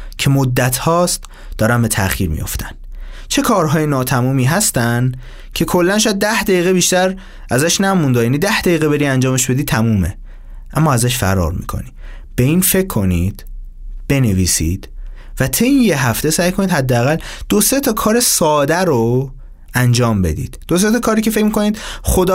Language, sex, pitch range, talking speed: Persian, male, 120-185 Hz, 150 wpm